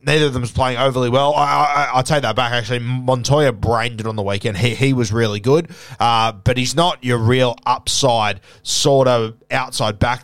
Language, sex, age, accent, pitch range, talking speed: English, male, 20-39, Australian, 110-130 Hz, 210 wpm